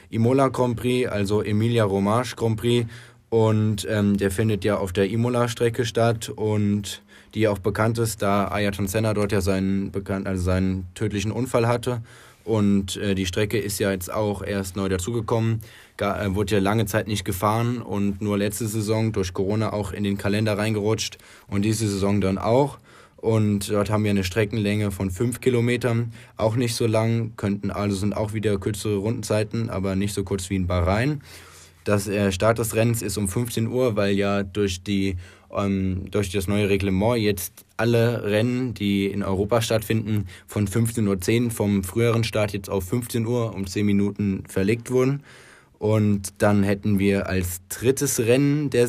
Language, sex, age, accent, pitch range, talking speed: German, male, 20-39, German, 100-115 Hz, 175 wpm